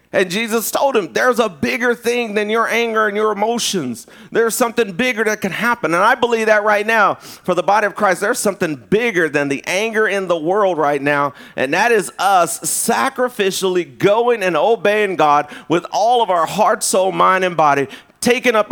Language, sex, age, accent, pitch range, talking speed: English, male, 40-59, American, 165-230 Hz, 200 wpm